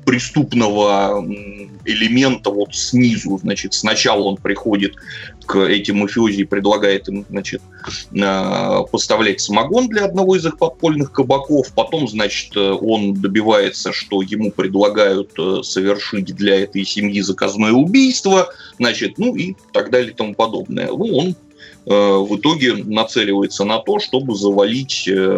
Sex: male